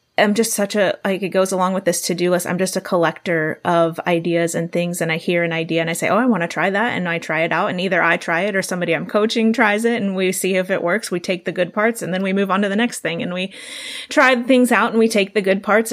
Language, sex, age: English, female, 30-49